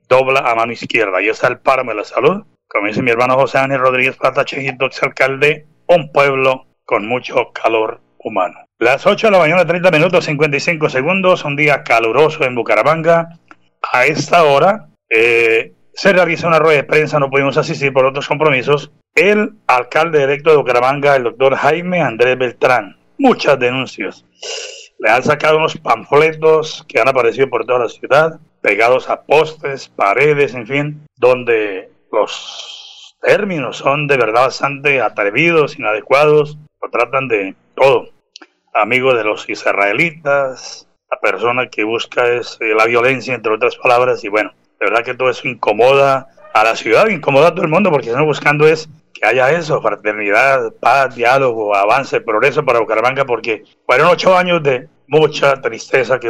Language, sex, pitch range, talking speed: Spanish, male, 135-180 Hz, 165 wpm